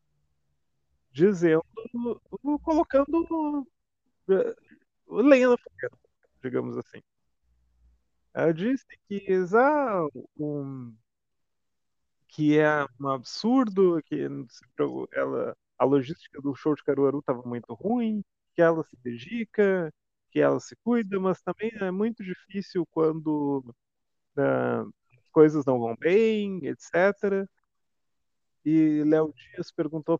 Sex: male